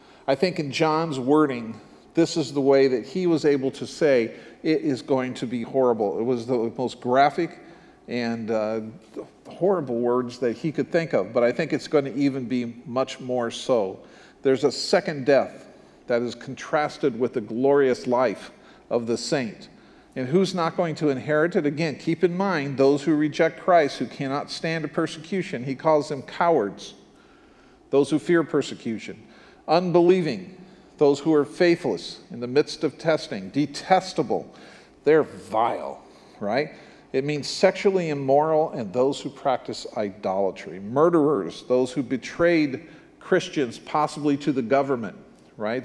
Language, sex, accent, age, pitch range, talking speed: English, male, American, 50-69, 130-165 Hz, 160 wpm